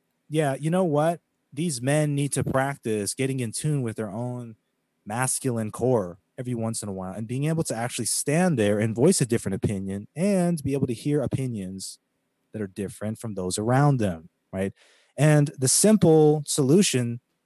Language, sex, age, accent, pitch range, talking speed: English, male, 30-49, American, 115-150 Hz, 180 wpm